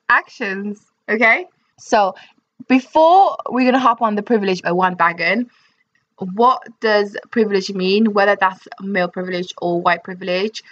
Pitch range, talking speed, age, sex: 185-225 Hz, 135 wpm, 20-39, female